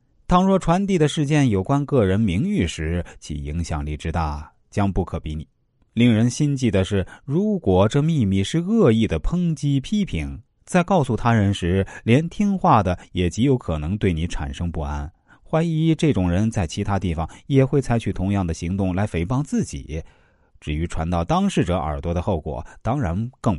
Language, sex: Chinese, male